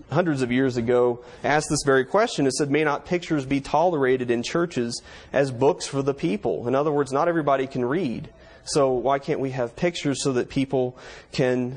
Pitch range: 125-145 Hz